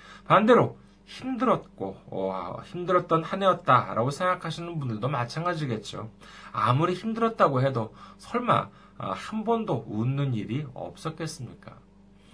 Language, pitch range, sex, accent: Korean, 110-150 Hz, male, native